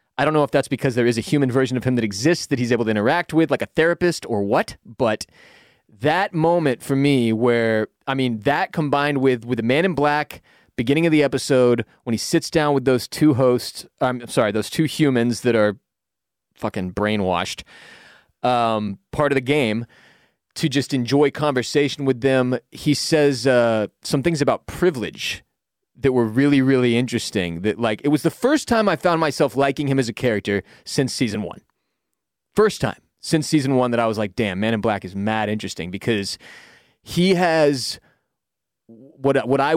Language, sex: English, male